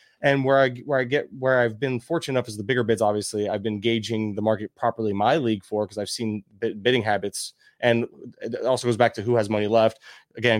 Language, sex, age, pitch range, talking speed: English, male, 20-39, 115-130 Hz, 240 wpm